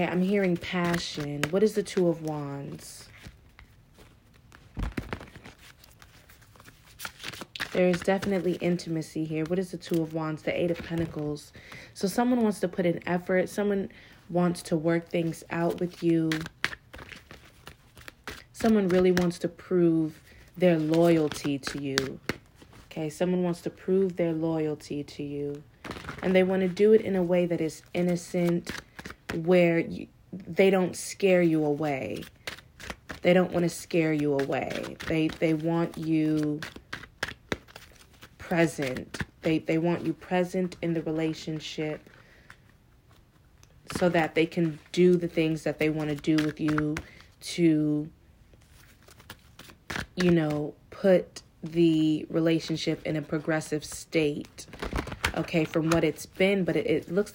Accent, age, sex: American, 30-49, female